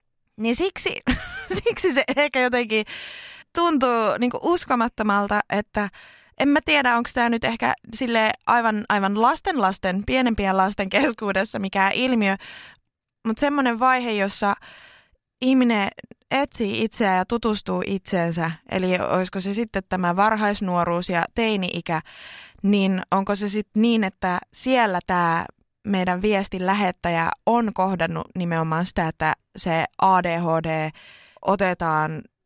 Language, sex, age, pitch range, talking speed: Finnish, female, 20-39, 180-235 Hz, 115 wpm